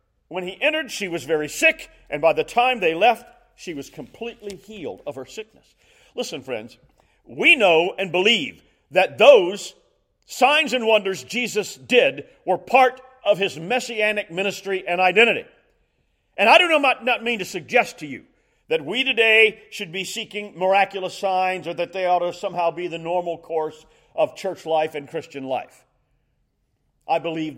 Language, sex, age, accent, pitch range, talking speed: English, male, 40-59, American, 155-220 Hz, 165 wpm